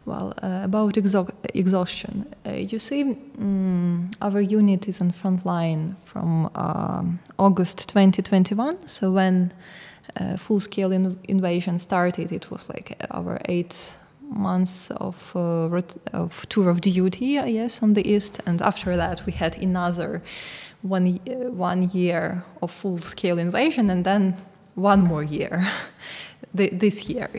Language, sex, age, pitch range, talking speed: English, female, 20-39, 175-205 Hz, 140 wpm